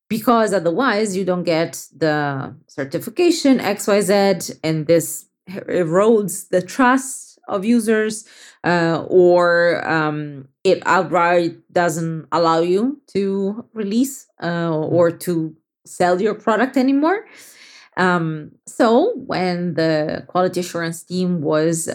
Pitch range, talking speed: 160-205 Hz, 110 wpm